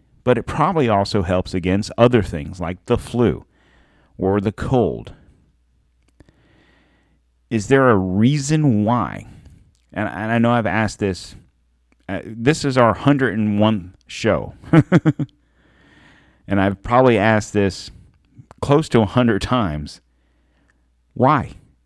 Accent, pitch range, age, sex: American, 90-120 Hz, 40-59, male